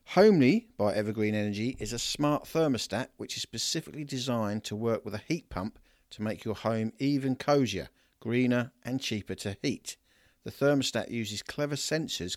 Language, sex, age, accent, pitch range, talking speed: English, male, 50-69, British, 105-135 Hz, 165 wpm